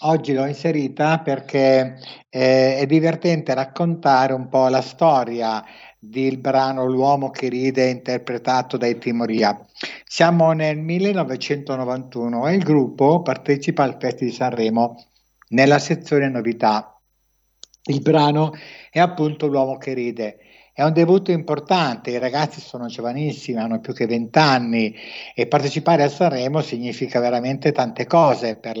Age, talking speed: 60-79, 130 wpm